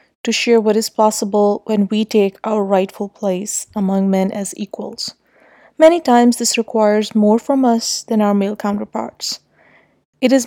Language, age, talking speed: English, 30-49, 160 wpm